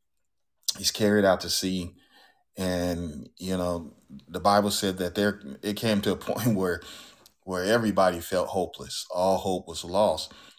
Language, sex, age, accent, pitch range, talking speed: English, male, 40-59, American, 85-100 Hz, 155 wpm